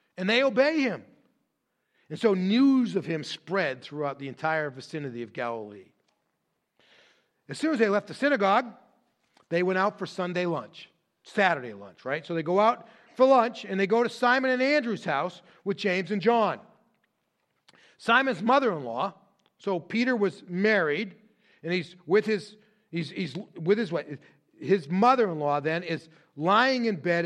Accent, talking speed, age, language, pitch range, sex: American, 155 wpm, 40-59, English, 155-220 Hz, male